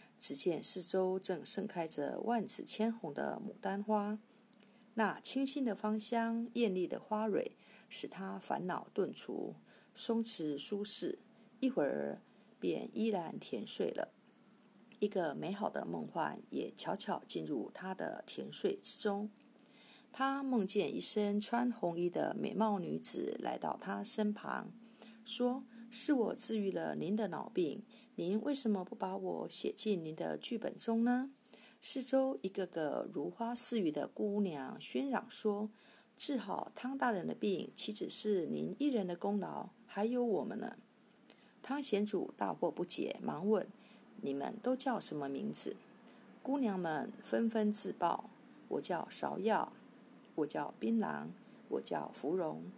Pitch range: 205-235 Hz